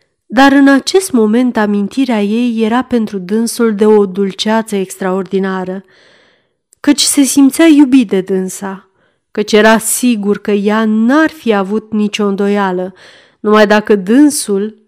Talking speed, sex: 130 wpm, female